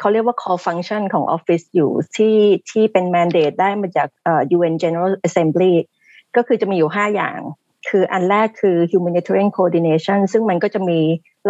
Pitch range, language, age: 170-210 Hz, Thai, 30-49